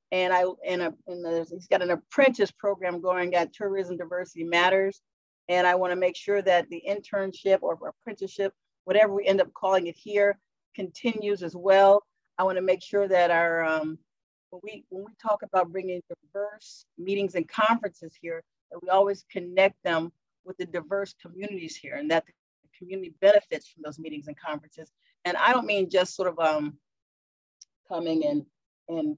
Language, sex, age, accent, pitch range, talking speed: English, female, 40-59, American, 165-200 Hz, 180 wpm